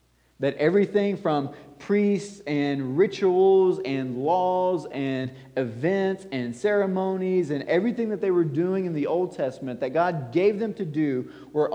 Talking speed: 150 wpm